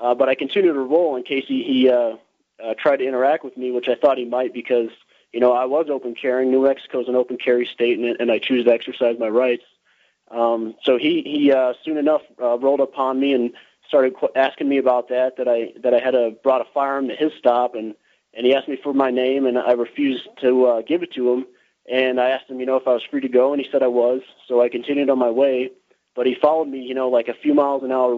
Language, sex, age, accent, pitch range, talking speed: English, male, 30-49, American, 120-135 Hz, 265 wpm